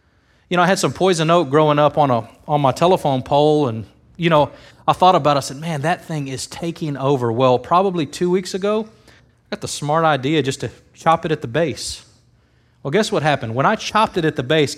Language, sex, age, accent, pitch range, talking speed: English, male, 30-49, American, 145-205 Hz, 235 wpm